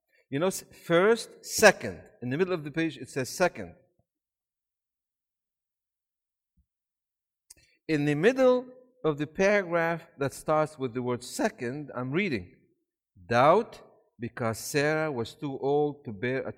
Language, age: English, 60-79